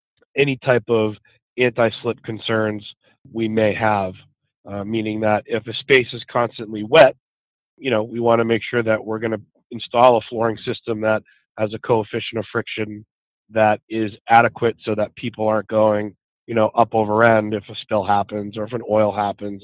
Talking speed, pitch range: 185 wpm, 105-115 Hz